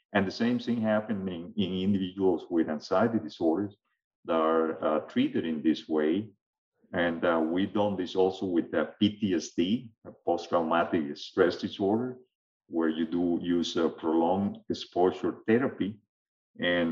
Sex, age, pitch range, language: male, 50-69, 85-110 Hz, English